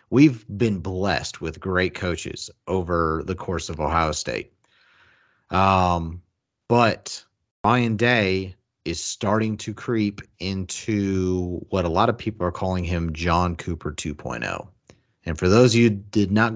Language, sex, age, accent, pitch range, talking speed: English, male, 40-59, American, 90-110 Hz, 145 wpm